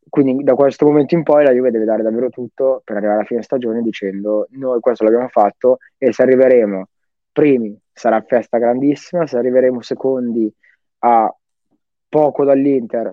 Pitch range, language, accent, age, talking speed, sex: 115-130 Hz, Italian, native, 20-39, 160 wpm, male